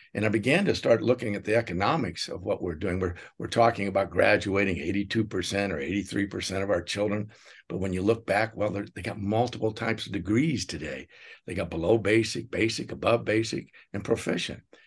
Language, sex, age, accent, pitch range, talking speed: English, male, 60-79, American, 100-140 Hz, 185 wpm